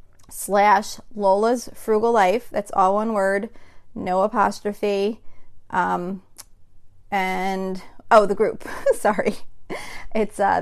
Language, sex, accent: English, female, American